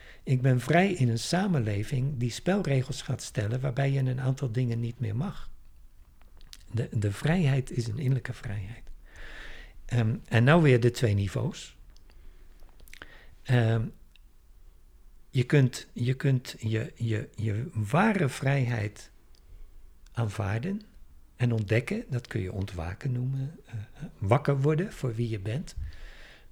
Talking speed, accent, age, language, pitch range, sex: 120 wpm, Dutch, 60-79, Dutch, 105-140 Hz, male